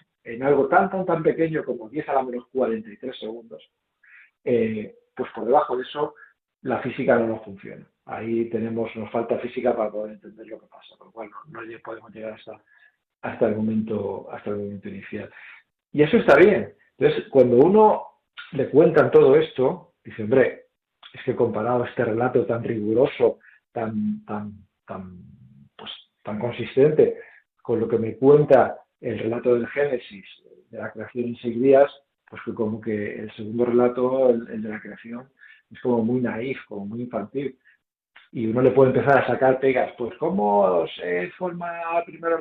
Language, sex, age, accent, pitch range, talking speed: Spanish, male, 50-69, Spanish, 110-150 Hz, 175 wpm